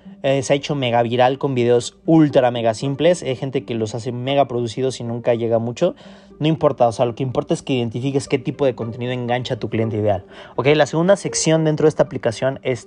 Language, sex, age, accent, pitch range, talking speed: Spanish, male, 20-39, Mexican, 125-155 Hz, 235 wpm